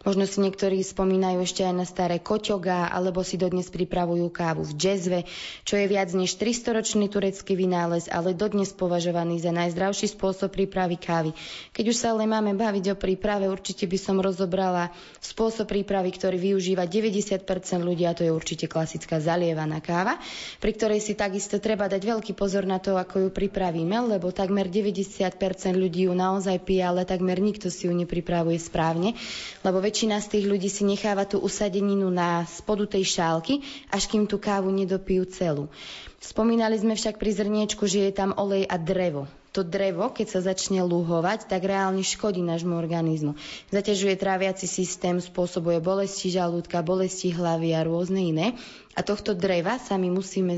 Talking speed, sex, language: 170 wpm, female, Slovak